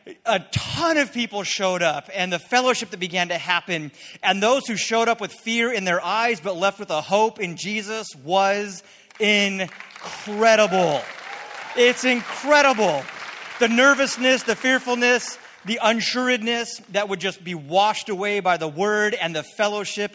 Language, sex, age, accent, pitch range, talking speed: English, male, 30-49, American, 180-220 Hz, 155 wpm